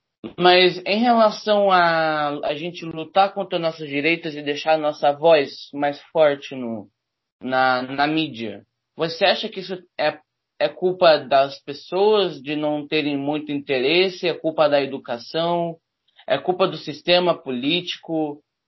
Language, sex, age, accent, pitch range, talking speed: Portuguese, male, 20-39, Brazilian, 140-170 Hz, 140 wpm